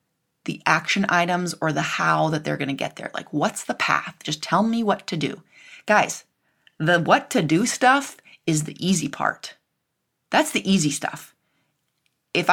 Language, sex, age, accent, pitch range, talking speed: English, female, 30-49, American, 165-225 Hz, 175 wpm